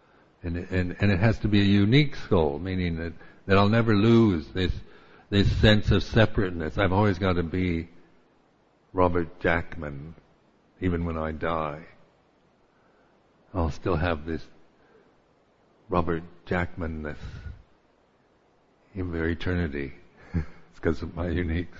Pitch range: 80-100 Hz